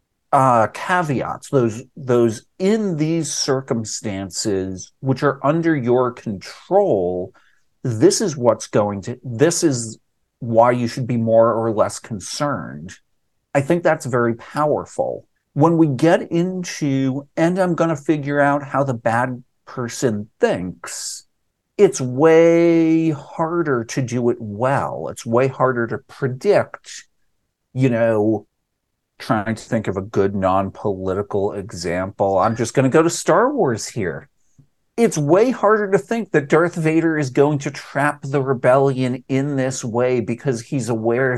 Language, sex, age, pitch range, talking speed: English, male, 50-69, 115-160 Hz, 140 wpm